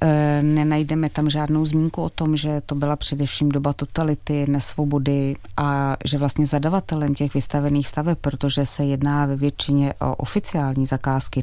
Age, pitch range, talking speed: 30-49, 140-165 Hz, 145 wpm